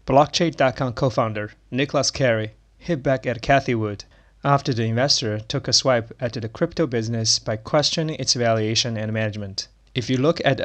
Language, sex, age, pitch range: Chinese, male, 20-39, 110-135 Hz